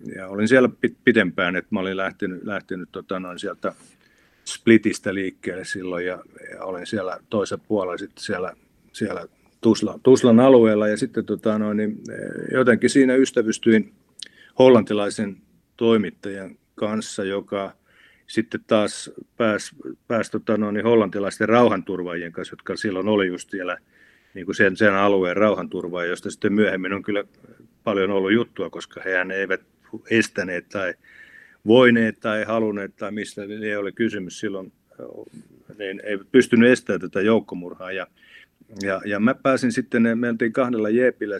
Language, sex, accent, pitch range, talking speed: Finnish, male, native, 95-115 Hz, 140 wpm